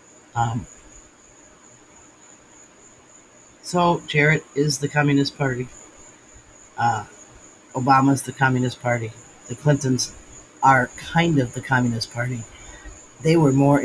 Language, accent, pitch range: English, American, 120-145 Hz